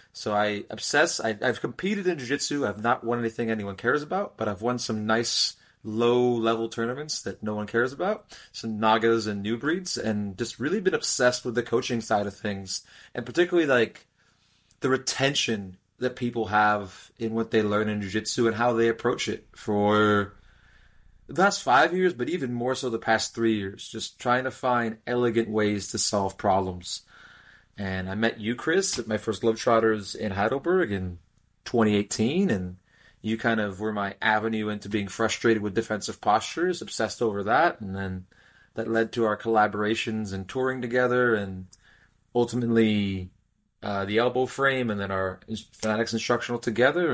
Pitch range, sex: 105-120 Hz, male